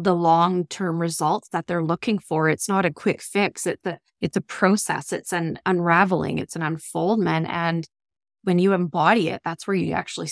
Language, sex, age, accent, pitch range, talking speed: English, female, 20-39, American, 175-220 Hz, 185 wpm